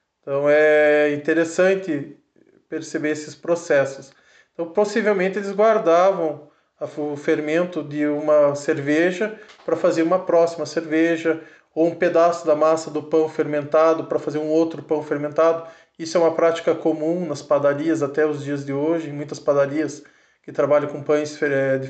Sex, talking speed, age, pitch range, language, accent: male, 150 wpm, 20-39, 150-180 Hz, Portuguese, Brazilian